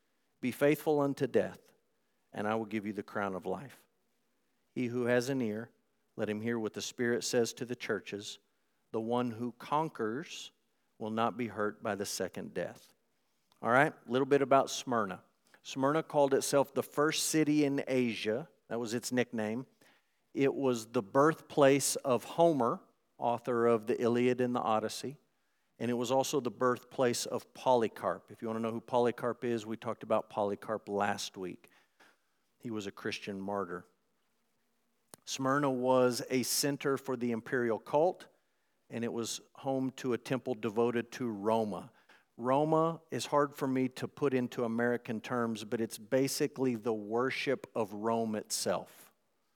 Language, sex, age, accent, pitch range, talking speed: English, male, 50-69, American, 110-135 Hz, 165 wpm